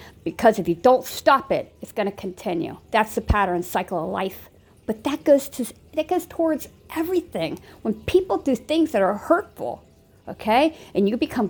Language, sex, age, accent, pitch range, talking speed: English, female, 50-69, American, 190-260 Hz, 185 wpm